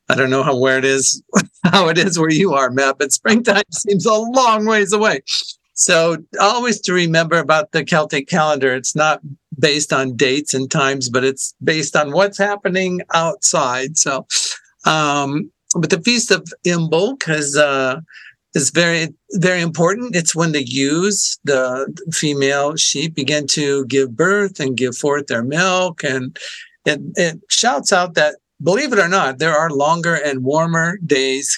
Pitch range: 140-180 Hz